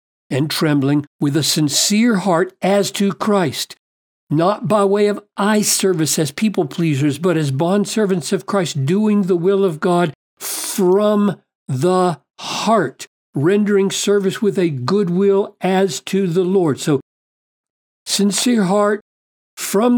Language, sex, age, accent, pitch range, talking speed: English, male, 60-79, American, 150-200 Hz, 140 wpm